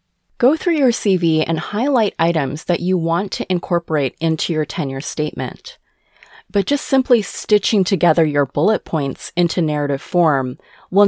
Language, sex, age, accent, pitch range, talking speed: English, female, 30-49, American, 145-195 Hz, 150 wpm